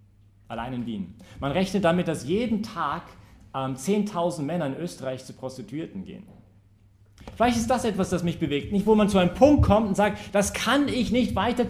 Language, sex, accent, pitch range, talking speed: English, male, German, 105-175 Hz, 195 wpm